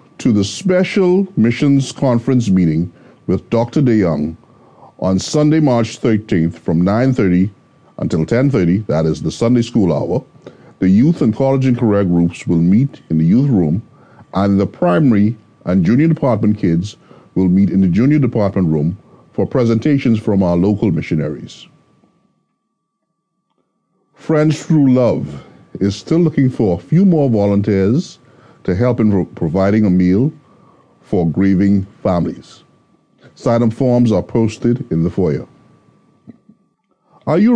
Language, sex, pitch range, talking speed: English, male, 95-145 Hz, 135 wpm